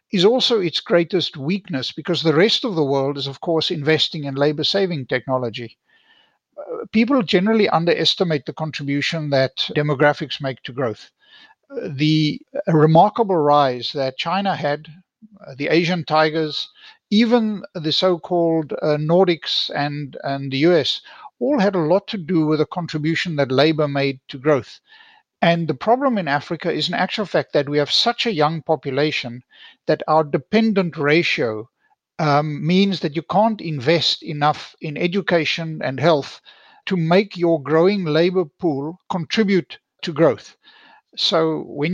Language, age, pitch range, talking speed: English, 60-79, 150-200 Hz, 150 wpm